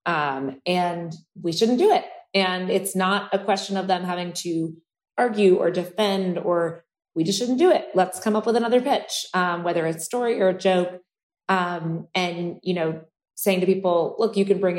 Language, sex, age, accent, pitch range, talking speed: English, female, 20-39, American, 175-210 Hz, 200 wpm